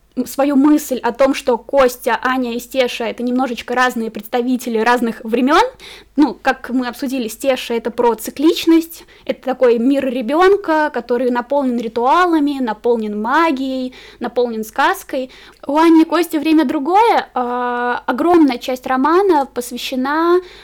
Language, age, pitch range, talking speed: Russian, 20-39, 240-280 Hz, 130 wpm